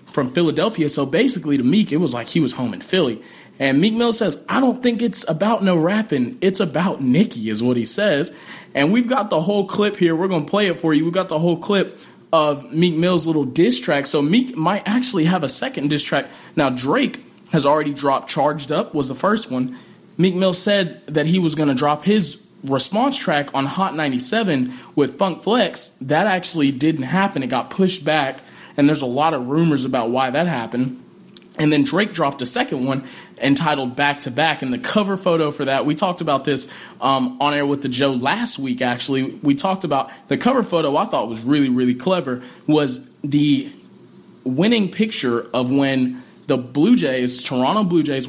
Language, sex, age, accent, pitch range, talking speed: English, male, 20-39, American, 135-195 Hz, 210 wpm